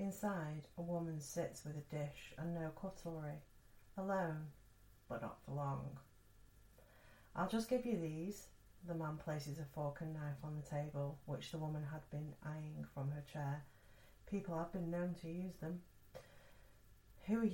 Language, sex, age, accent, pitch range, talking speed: English, female, 40-59, British, 115-170 Hz, 165 wpm